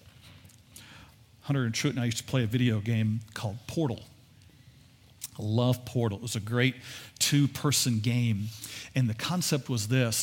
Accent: American